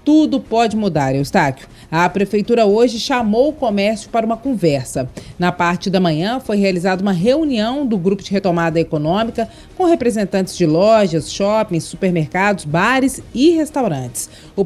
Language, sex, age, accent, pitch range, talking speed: Portuguese, female, 40-59, Brazilian, 180-245 Hz, 145 wpm